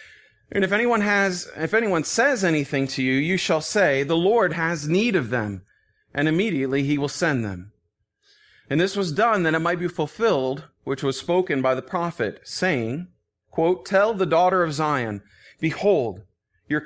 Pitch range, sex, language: 125-180 Hz, male, English